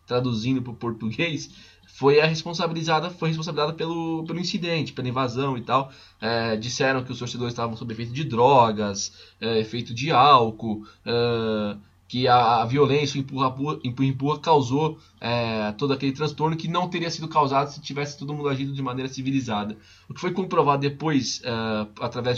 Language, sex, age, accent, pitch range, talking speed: Portuguese, male, 20-39, Brazilian, 115-160 Hz, 175 wpm